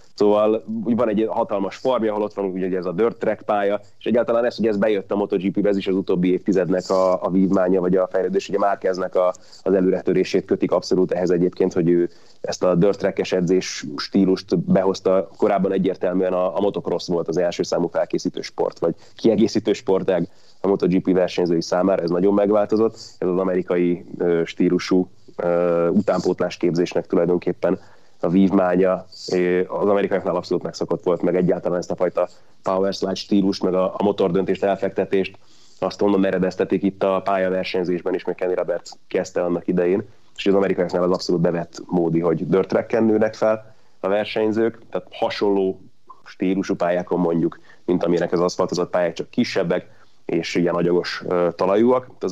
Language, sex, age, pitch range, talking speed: Hungarian, male, 30-49, 90-100 Hz, 160 wpm